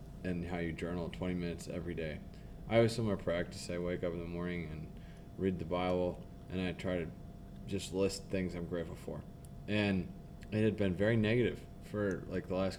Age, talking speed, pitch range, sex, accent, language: 20-39, 195 wpm, 85-95 Hz, male, American, English